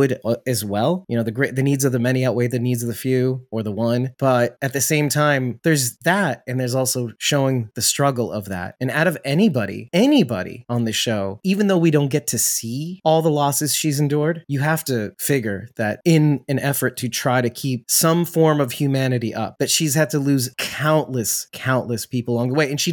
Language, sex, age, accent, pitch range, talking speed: English, male, 20-39, American, 120-155 Hz, 220 wpm